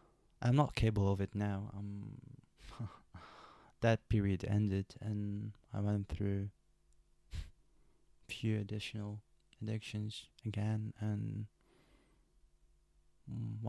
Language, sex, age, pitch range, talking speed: English, male, 20-39, 100-115 Hz, 90 wpm